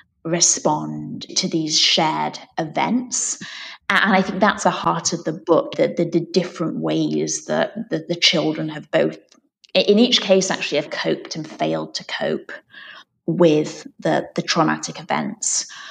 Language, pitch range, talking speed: English, 160-190 Hz, 150 wpm